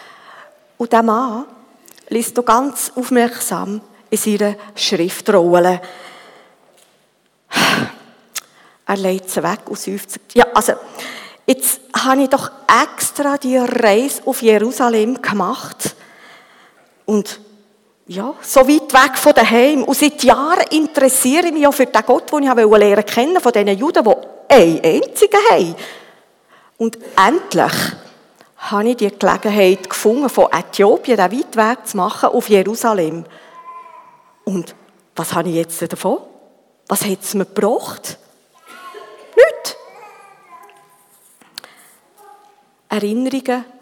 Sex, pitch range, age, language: female, 200-275 Hz, 50-69, German